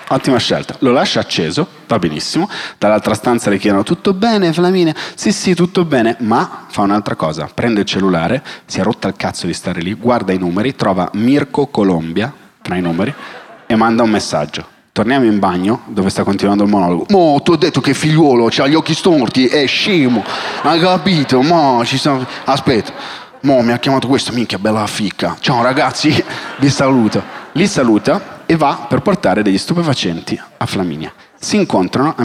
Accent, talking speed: native, 180 wpm